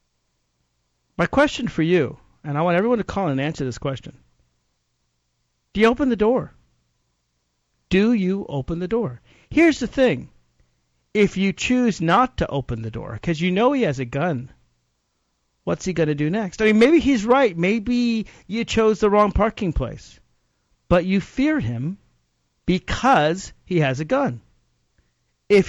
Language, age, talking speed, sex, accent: English, 50-69, 165 wpm, male, American